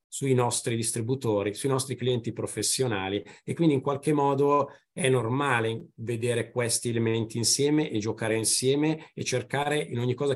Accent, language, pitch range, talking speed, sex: native, Italian, 115-145 Hz, 150 wpm, male